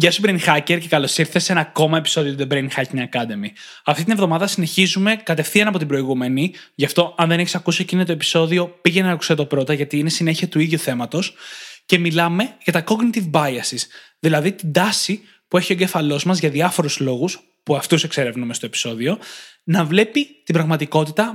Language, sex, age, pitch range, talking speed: Greek, male, 20-39, 145-190 Hz, 195 wpm